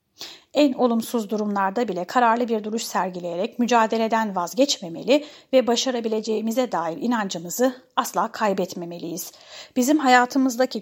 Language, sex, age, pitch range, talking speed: Turkish, female, 30-49, 215-275 Hz, 100 wpm